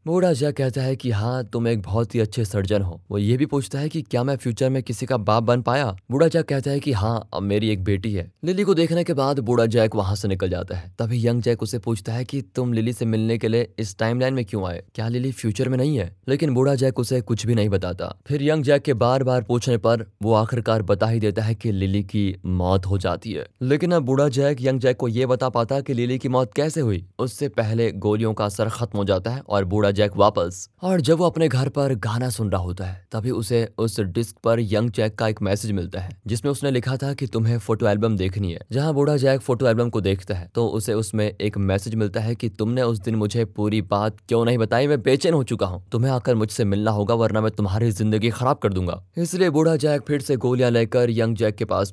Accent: native